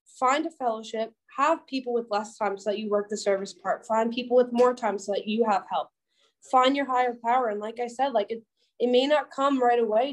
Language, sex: English, female